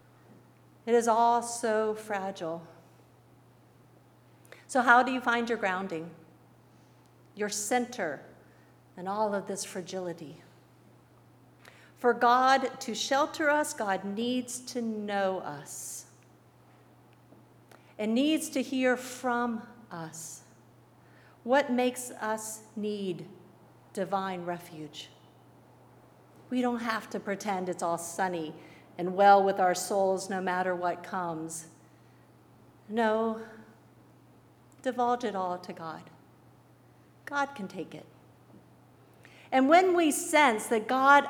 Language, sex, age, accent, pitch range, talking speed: English, female, 50-69, American, 185-255 Hz, 110 wpm